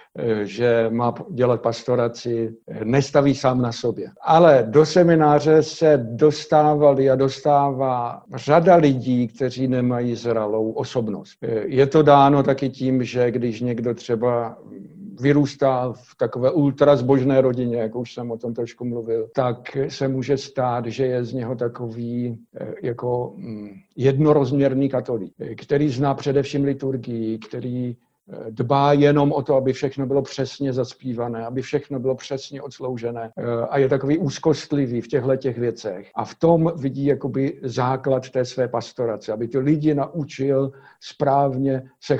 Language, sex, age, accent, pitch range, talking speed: Czech, male, 60-79, native, 120-140 Hz, 140 wpm